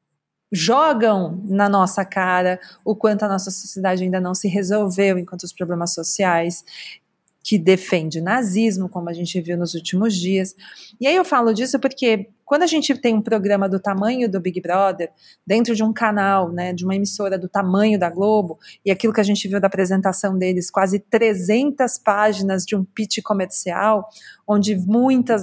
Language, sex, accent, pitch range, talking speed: Portuguese, female, Brazilian, 185-220 Hz, 175 wpm